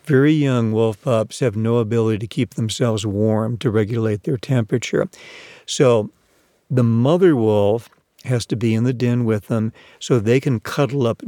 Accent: American